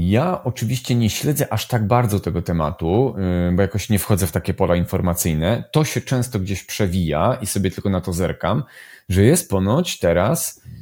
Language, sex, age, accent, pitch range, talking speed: Polish, male, 30-49, native, 90-120 Hz, 180 wpm